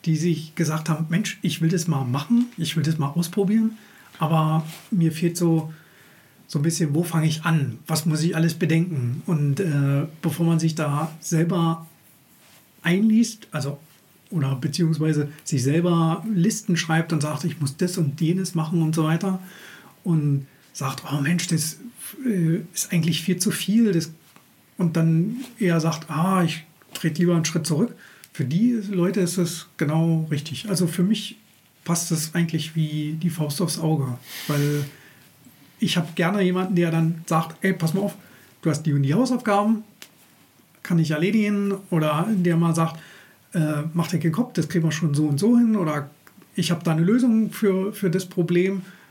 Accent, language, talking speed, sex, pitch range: German, German, 175 wpm, male, 160-185 Hz